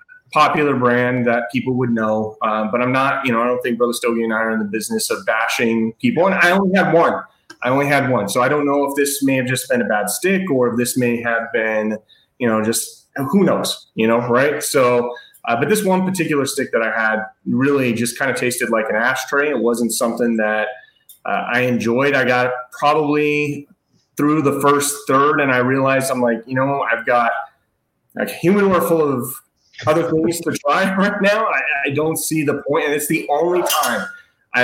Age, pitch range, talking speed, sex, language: 30-49, 120-155 Hz, 215 wpm, male, English